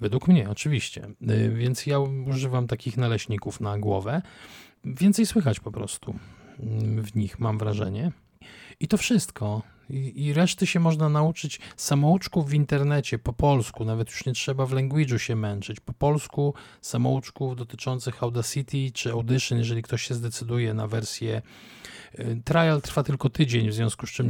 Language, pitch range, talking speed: Polish, 115-135 Hz, 150 wpm